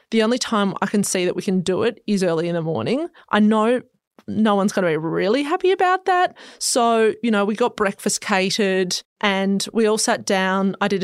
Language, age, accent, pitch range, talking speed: English, 20-39, Australian, 195-225 Hz, 225 wpm